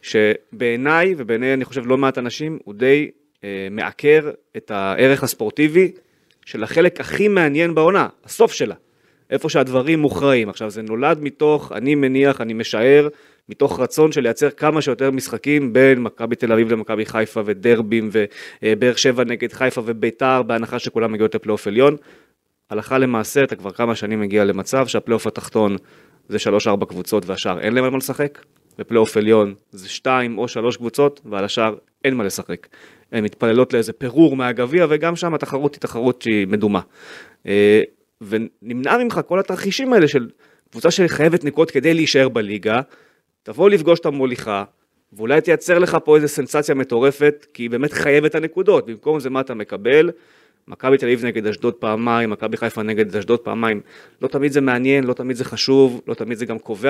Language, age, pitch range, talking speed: Hebrew, 30-49, 110-145 Hz, 150 wpm